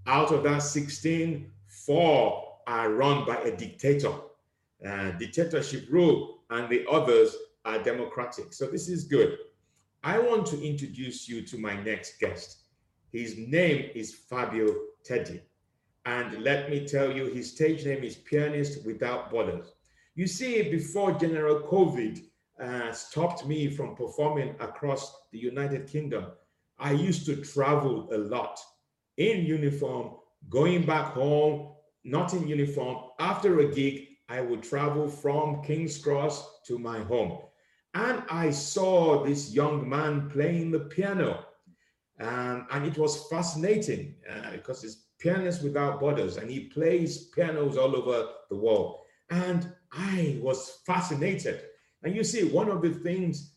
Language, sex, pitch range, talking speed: English, male, 130-170 Hz, 140 wpm